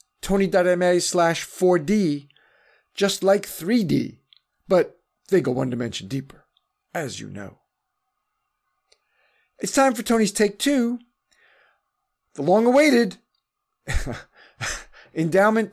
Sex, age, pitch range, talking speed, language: male, 40-59, 135-190 Hz, 90 wpm, English